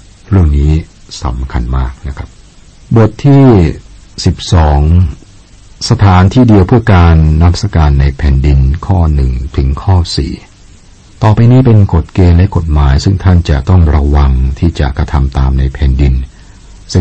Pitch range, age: 70-90 Hz, 60-79